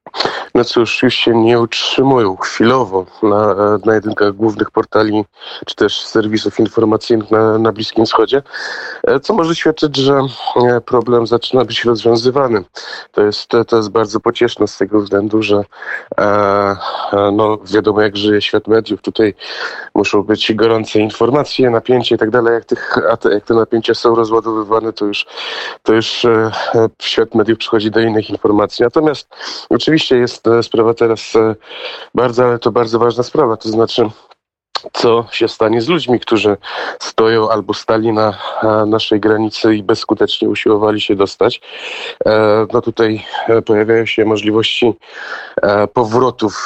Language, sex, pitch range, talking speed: Polish, male, 105-115 Hz, 135 wpm